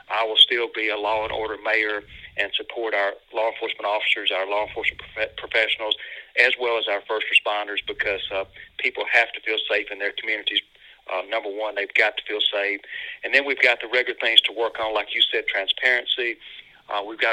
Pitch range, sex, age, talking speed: 110-130 Hz, male, 40-59, 210 wpm